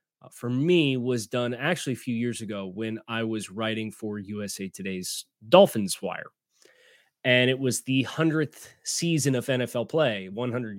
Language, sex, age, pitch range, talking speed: English, male, 20-39, 110-140 Hz, 155 wpm